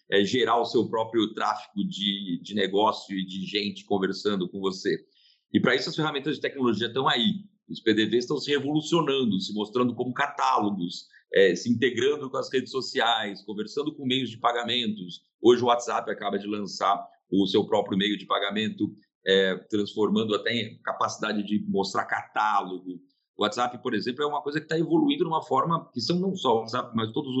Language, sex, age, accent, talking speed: Portuguese, male, 50-69, Brazilian, 190 wpm